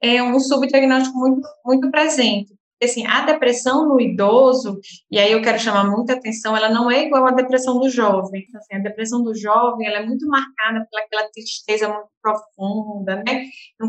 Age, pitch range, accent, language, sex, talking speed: 20-39, 195-235 Hz, Brazilian, Portuguese, female, 180 wpm